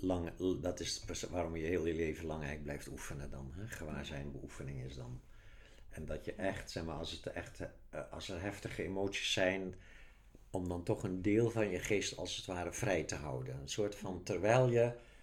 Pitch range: 90-115 Hz